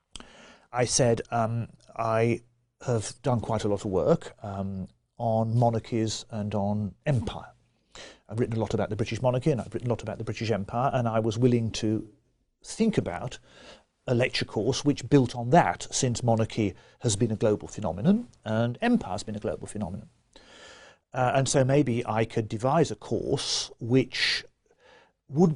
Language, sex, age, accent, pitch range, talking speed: English, male, 50-69, British, 110-135 Hz, 170 wpm